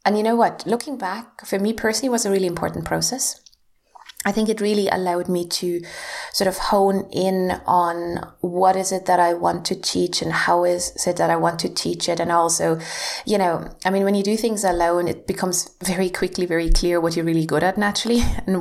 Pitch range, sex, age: 170-195 Hz, female, 20-39